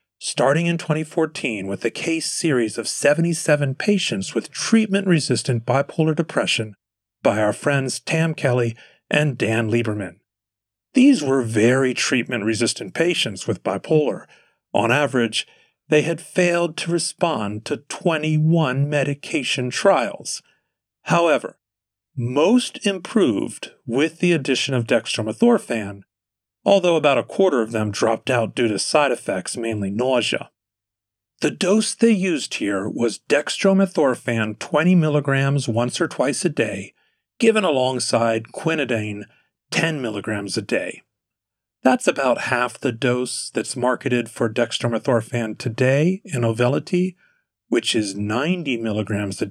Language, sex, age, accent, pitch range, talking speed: English, male, 40-59, American, 115-165 Hz, 120 wpm